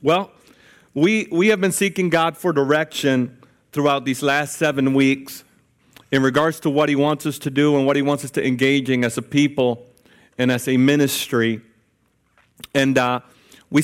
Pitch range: 130-150 Hz